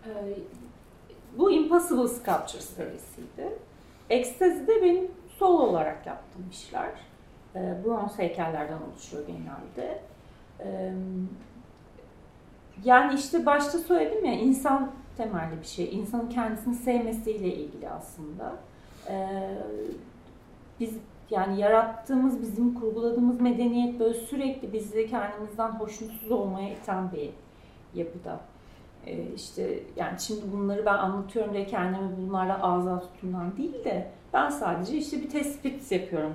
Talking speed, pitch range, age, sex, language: 100 wpm, 195-285 Hz, 40-59, female, Turkish